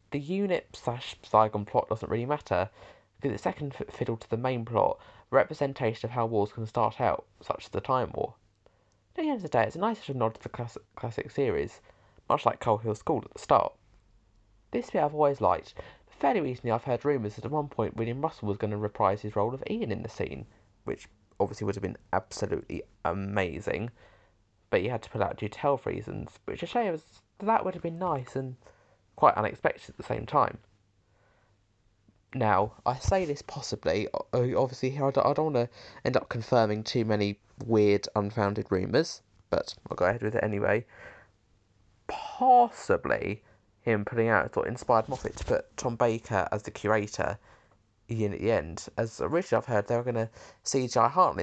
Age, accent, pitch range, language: 20-39, British, 100-125 Hz, English